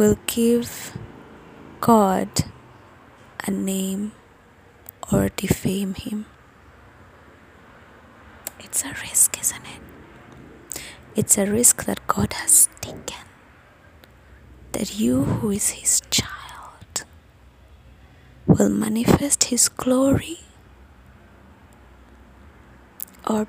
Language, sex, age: English, female, 20-39